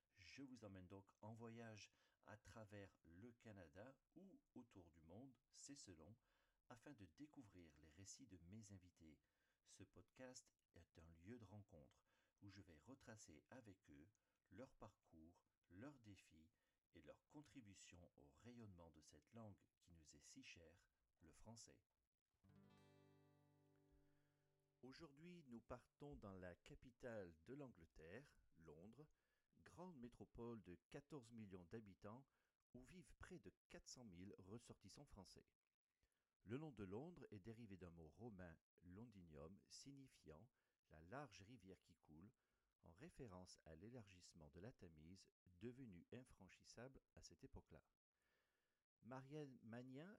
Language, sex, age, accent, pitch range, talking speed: French, male, 50-69, French, 90-125 Hz, 135 wpm